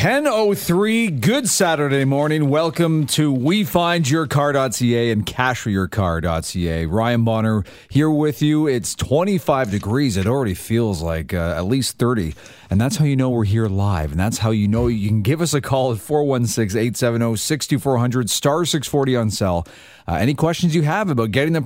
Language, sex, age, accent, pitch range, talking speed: English, male, 40-59, American, 100-145 Hz, 165 wpm